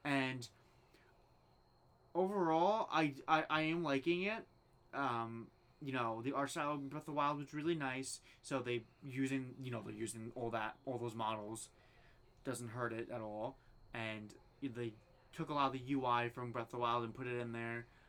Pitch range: 120-150 Hz